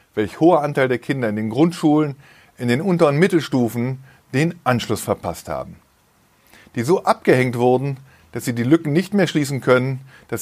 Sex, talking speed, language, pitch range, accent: male, 165 wpm, German, 115-150 Hz, German